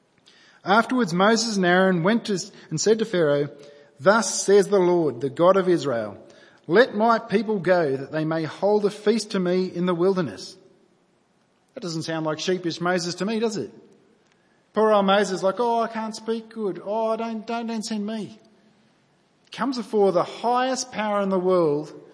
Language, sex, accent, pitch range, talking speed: English, male, Australian, 180-220 Hz, 175 wpm